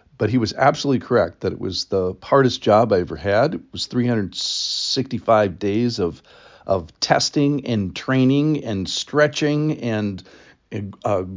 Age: 50-69